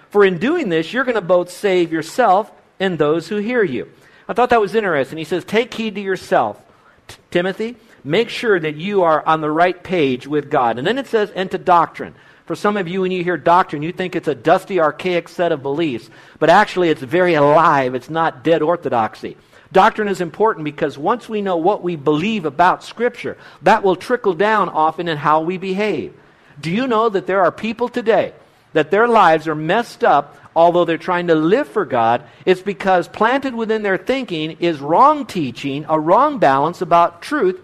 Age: 50-69